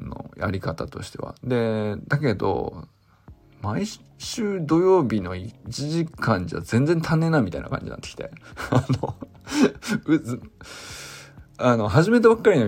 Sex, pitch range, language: male, 105-170 Hz, Japanese